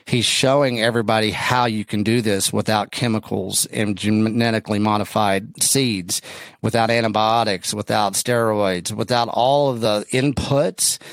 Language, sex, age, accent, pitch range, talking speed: English, male, 40-59, American, 105-125 Hz, 125 wpm